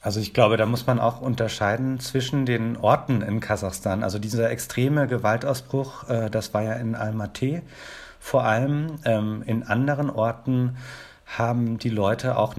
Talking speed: 150 wpm